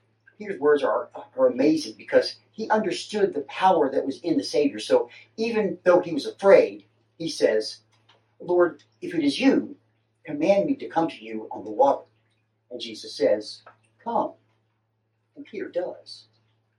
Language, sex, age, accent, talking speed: English, male, 40-59, American, 155 wpm